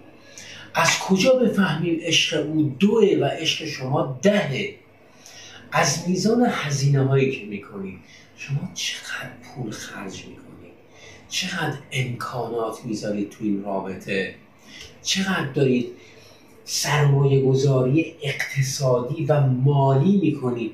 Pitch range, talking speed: 130-185 Hz, 100 wpm